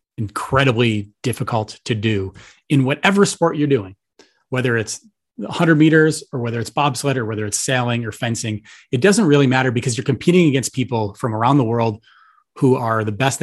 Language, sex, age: English, male, 30-49